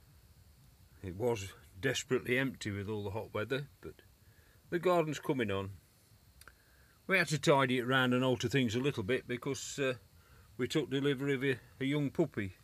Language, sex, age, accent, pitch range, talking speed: English, male, 40-59, British, 100-135 Hz, 170 wpm